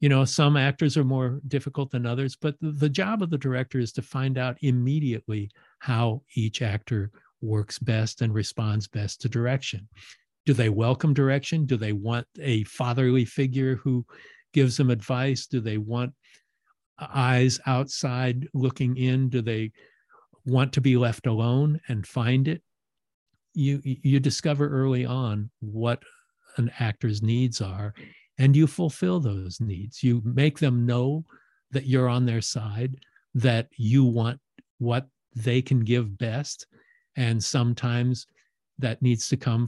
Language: English